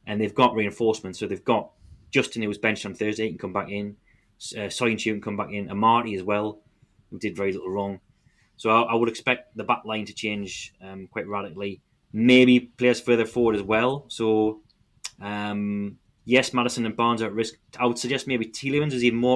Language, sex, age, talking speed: English, male, 20-39, 215 wpm